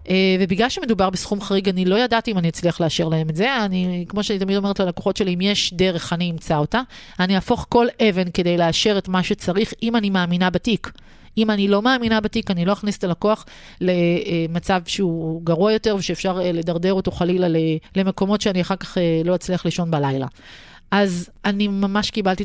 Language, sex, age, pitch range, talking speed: Hebrew, female, 30-49, 160-195 Hz, 185 wpm